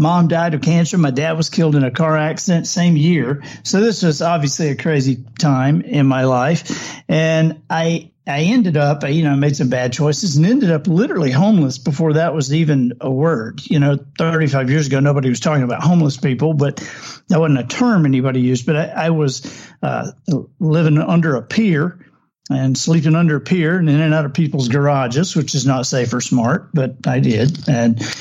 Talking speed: 205 wpm